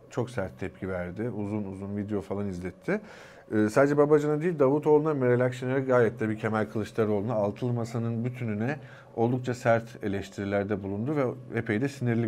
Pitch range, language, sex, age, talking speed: 105-135 Hz, Turkish, male, 50-69, 155 wpm